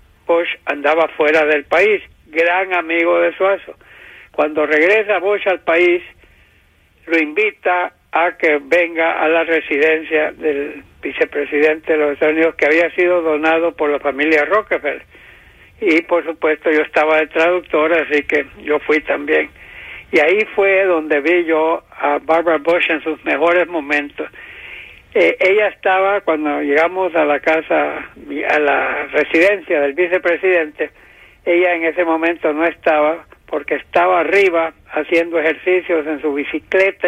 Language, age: English, 60-79